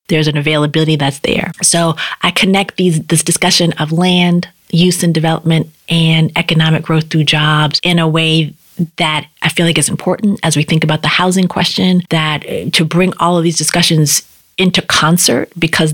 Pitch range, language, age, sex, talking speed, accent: 155-175 Hz, English, 30-49, female, 175 wpm, American